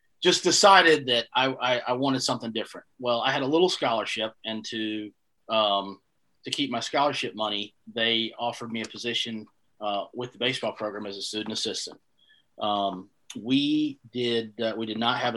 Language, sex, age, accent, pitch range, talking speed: English, male, 30-49, American, 110-125 Hz, 175 wpm